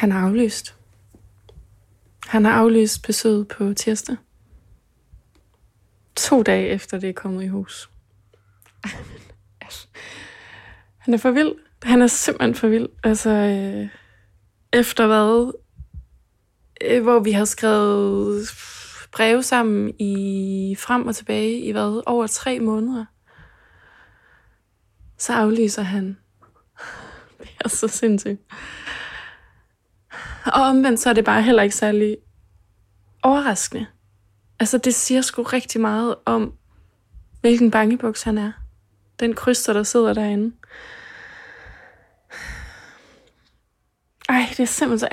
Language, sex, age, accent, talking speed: Danish, female, 20-39, native, 105 wpm